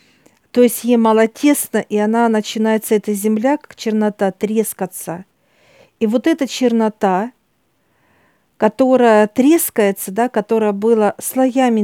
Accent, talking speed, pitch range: native, 115 wpm, 205-235 Hz